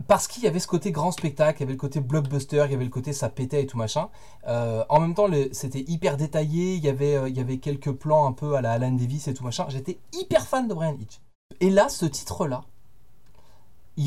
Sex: male